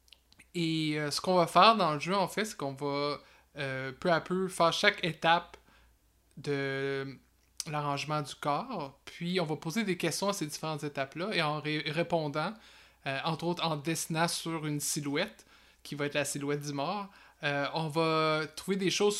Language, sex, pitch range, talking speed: French, male, 140-170 Hz, 185 wpm